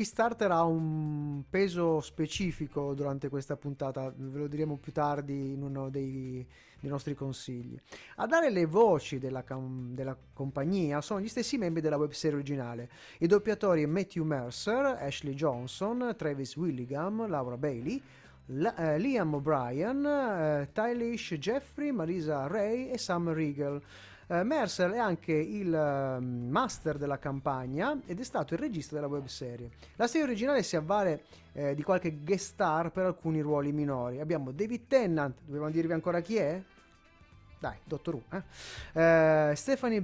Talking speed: 150 wpm